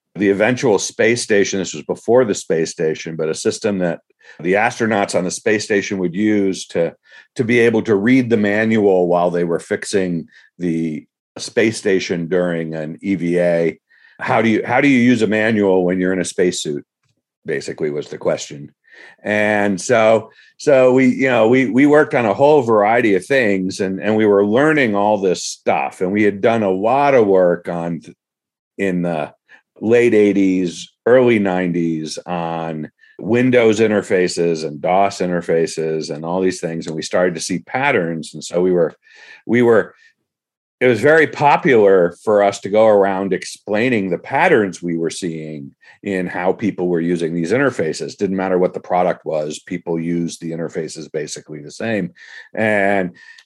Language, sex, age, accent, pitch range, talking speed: English, male, 50-69, American, 85-110 Hz, 175 wpm